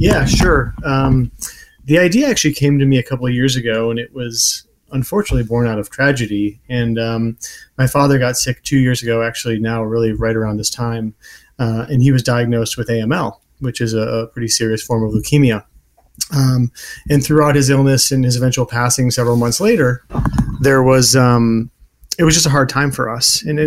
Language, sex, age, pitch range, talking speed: English, male, 30-49, 115-135 Hz, 200 wpm